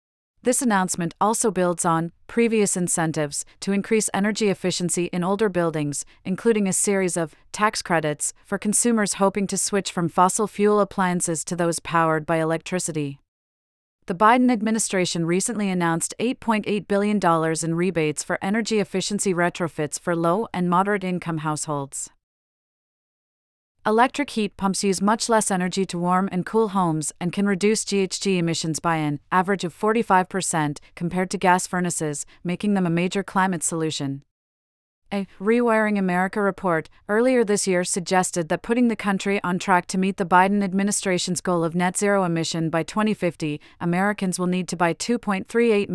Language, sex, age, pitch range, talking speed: English, female, 40-59, 165-200 Hz, 155 wpm